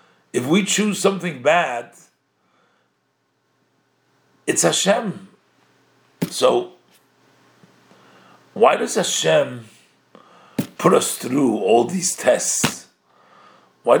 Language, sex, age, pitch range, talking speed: English, male, 50-69, 135-195 Hz, 75 wpm